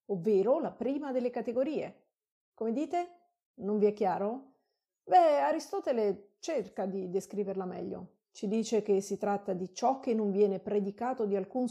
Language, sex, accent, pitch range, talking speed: Italian, female, native, 195-255 Hz, 155 wpm